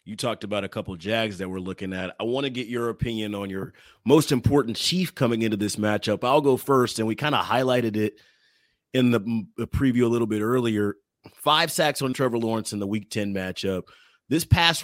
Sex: male